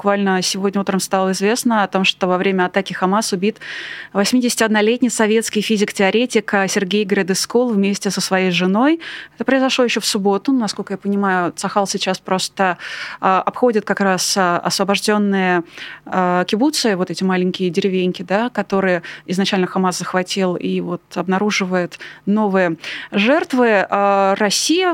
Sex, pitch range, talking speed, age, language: female, 190-230 Hz, 130 wpm, 20-39, Russian